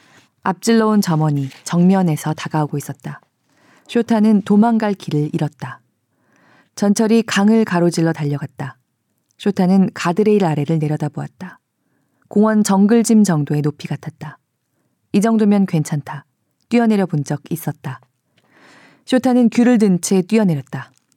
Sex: female